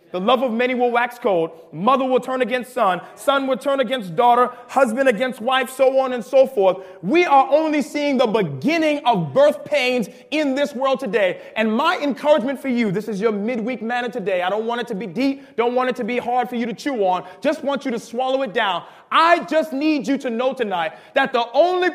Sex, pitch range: male, 245-310 Hz